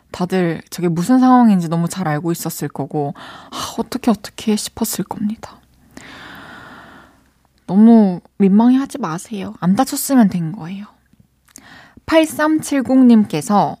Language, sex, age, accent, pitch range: Korean, female, 20-39, native, 180-225 Hz